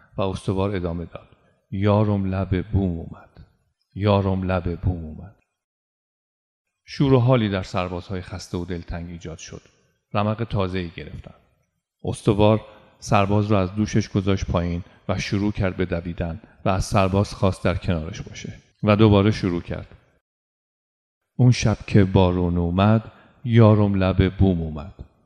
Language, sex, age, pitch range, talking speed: Persian, male, 40-59, 90-105 Hz, 135 wpm